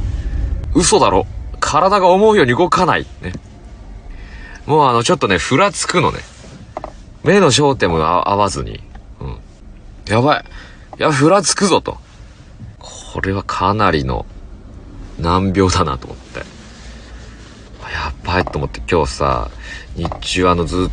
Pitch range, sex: 80-100 Hz, male